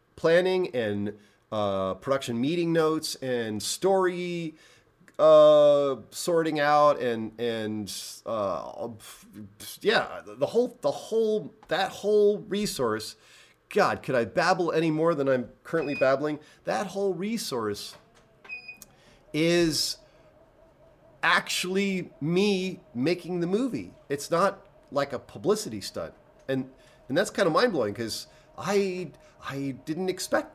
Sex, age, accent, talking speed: male, 40-59, American, 115 wpm